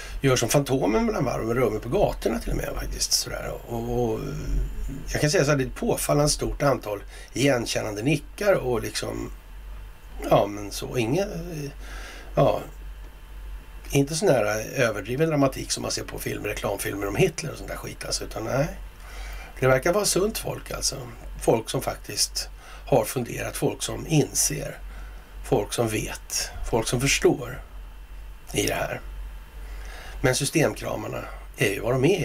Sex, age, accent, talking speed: male, 60-79, native, 155 wpm